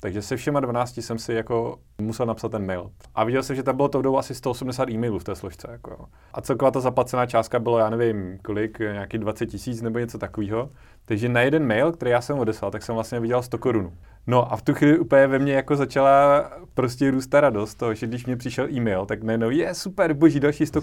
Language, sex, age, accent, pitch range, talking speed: Czech, male, 30-49, native, 115-130 Hz, 235 wpm